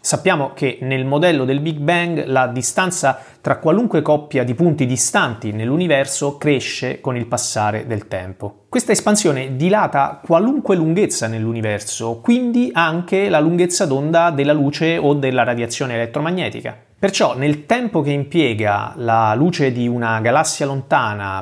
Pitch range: 120-165 Hz